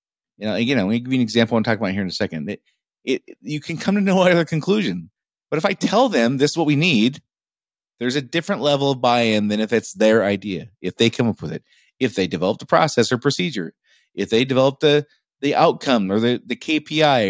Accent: American